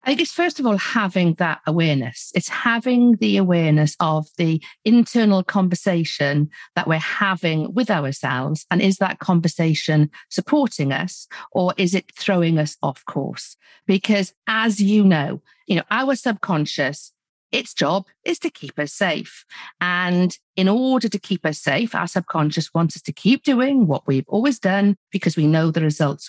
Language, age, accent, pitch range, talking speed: English, 50-69, British, 160-220 Hz, 165 wpm